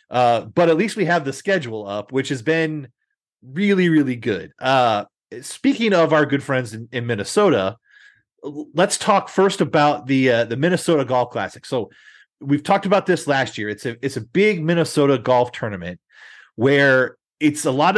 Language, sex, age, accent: English, male, 30-49, American